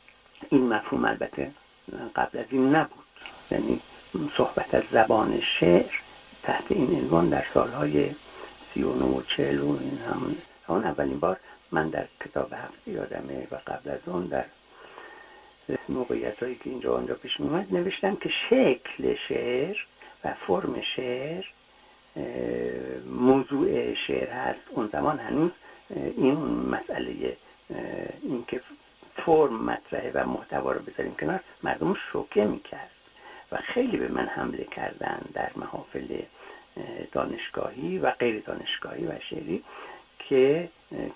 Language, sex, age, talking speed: Persian, male, 60-79, 120 wpm